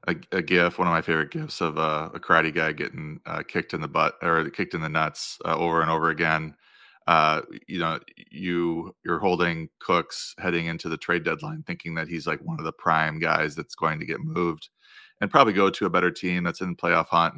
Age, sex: 30-49, male